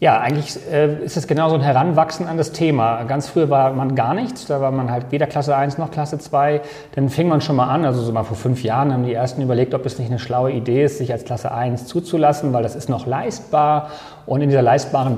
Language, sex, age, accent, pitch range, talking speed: German, male, 40-59, German, 125-145 Hz, 255 wpm